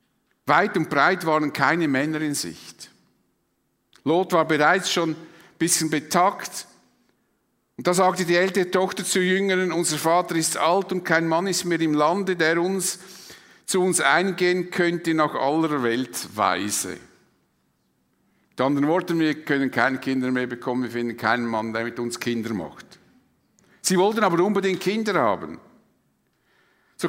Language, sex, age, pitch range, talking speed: German, male, 50-69, 135-185 Hz, 150 wpm